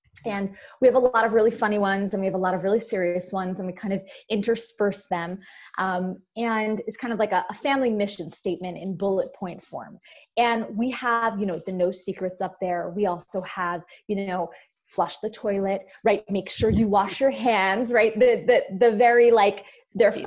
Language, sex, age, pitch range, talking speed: English, female, 20-39, 190-240 Hz, 210 wpm